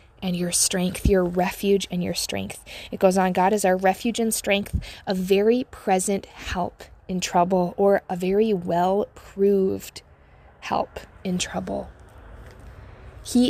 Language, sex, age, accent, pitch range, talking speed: English, female, 20-39, American, 175-220 Hz, 140 wpm